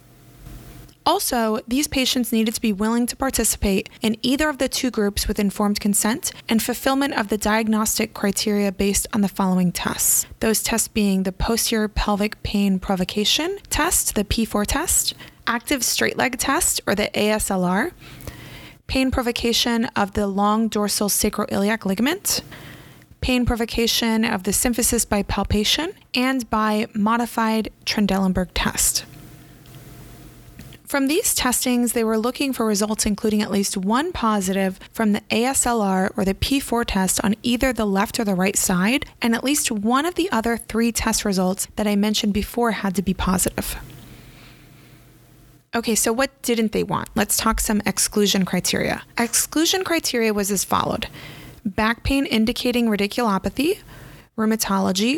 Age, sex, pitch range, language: 20-39, female, 205-240 Hz, English